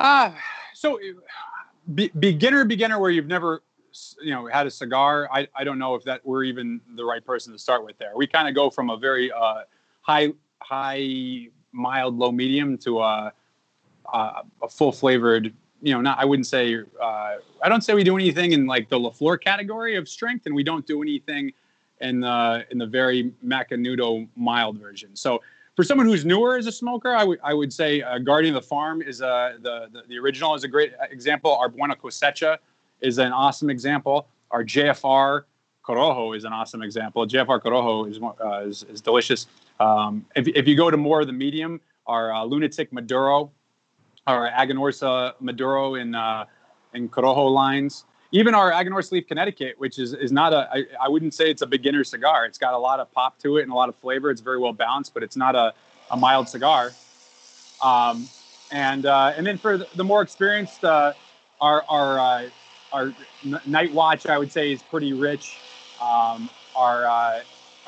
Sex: male